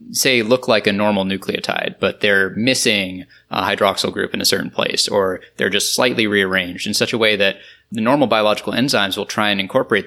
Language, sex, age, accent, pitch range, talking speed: English, male, 20-39, American, 95-110 Hz, 205 wpm